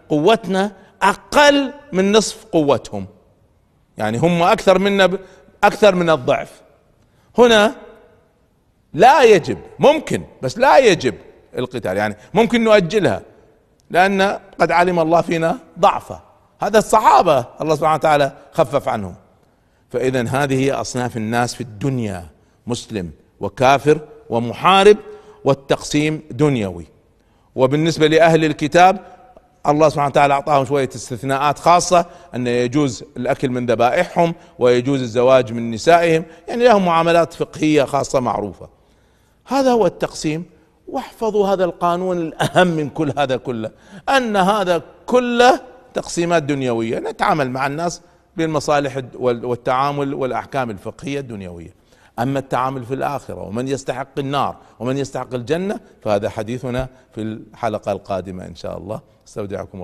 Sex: male